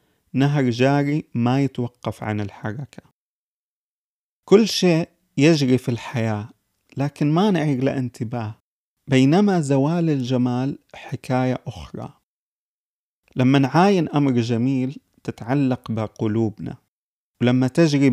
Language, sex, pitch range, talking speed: Arabic, male, 120-145 Hz, 95 wpm